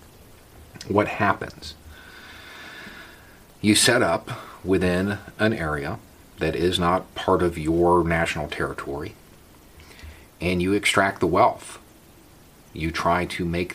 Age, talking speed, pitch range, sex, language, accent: 40-59, 110 wpm, 80-105 Hz, male, English, American